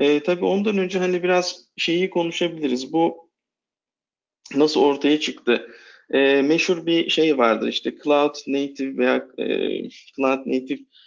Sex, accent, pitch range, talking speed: male, native, 130-155 Hz, 130 wpm